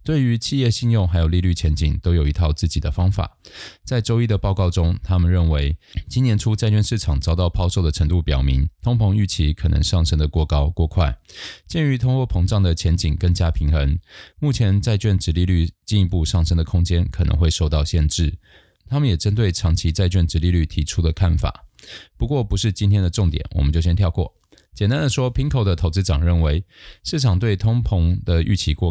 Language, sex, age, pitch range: Chinese, male, 20-39, 80-100 Hz